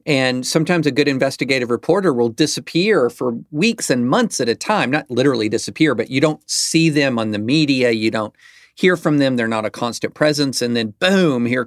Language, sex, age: English, male, 40-59